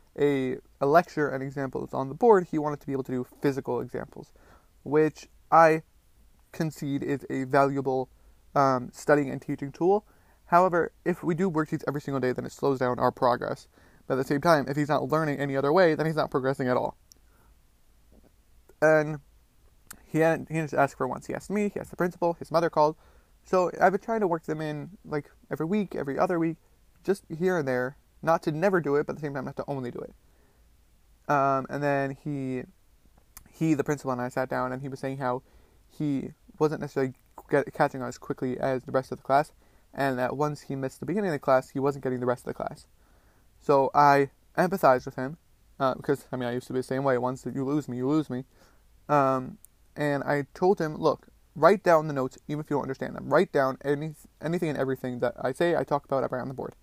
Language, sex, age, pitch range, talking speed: English, male, 20-39, 130-155 Hz, 225 wpm